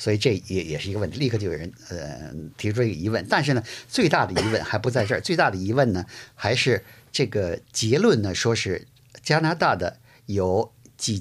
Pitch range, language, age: 105-140 Hz, Chinese, 50-69